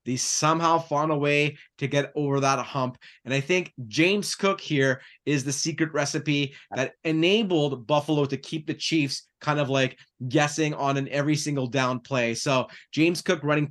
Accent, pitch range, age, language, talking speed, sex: American, 135-160 Hz, 30-49, English, 180 wpm, male